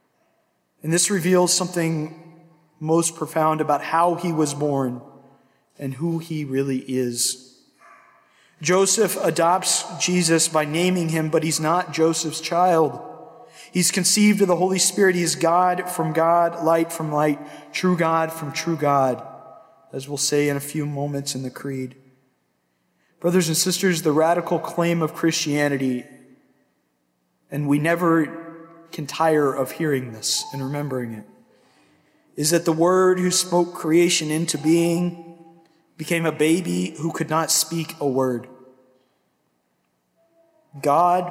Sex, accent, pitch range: male, American, 145-170 Hz